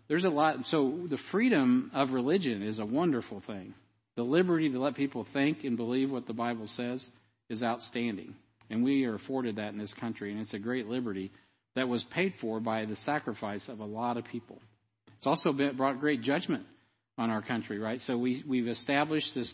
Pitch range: 110-130 Hz